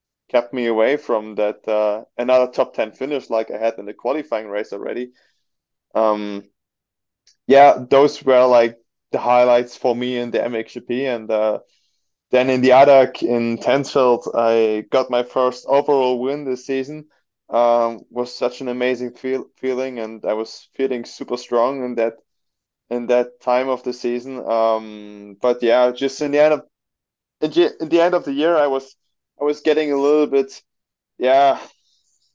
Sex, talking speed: male, 165 wpm